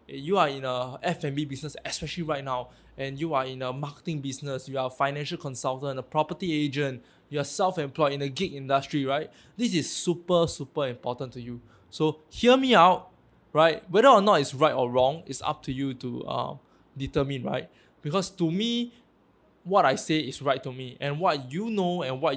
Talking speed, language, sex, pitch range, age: 200 wpm, English, male, 135-170 Hz, 20-39